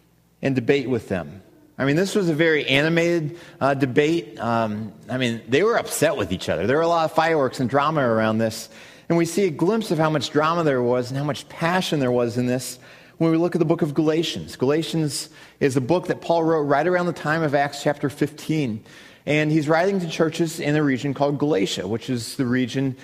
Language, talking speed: English, 230 wpm